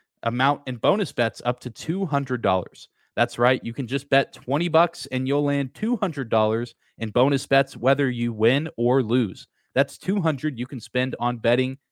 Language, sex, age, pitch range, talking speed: English, male, 20-39, 120-150 Hz, 170 wpm